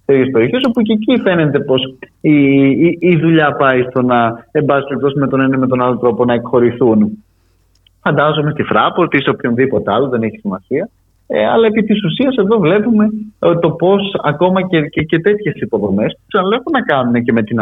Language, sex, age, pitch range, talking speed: Greek, male, 30-49, 120-175 Hz, 180 wpm